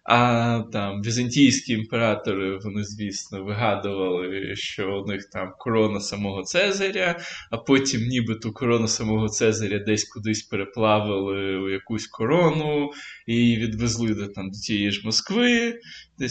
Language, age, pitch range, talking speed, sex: Ukrainian, 20-39, 105-145 Hz, 135 wpm, male